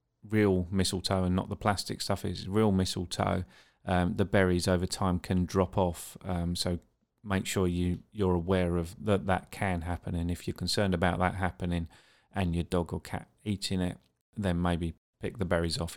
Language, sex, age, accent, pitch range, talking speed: English, male, 30-49, British, 90-100 Hz, 190 wpm